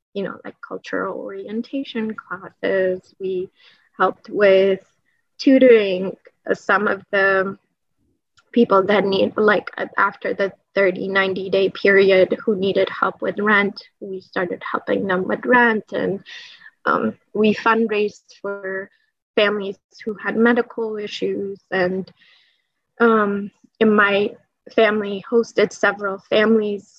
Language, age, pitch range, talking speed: English, 20-39, 195-230 Hz, 115 wpm